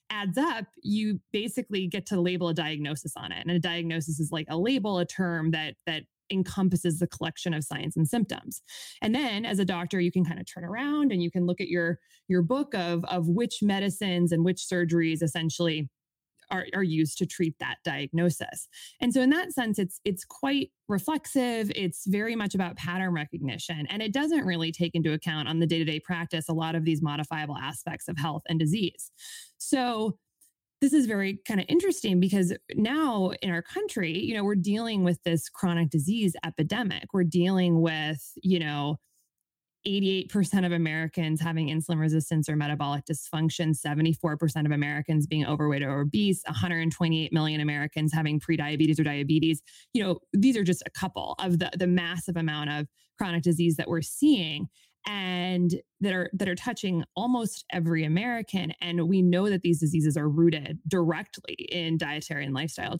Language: English